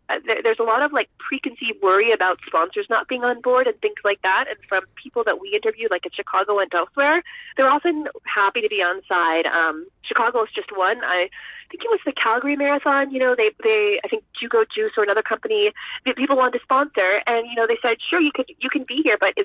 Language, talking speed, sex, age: English, 235 wpm, female, 20-39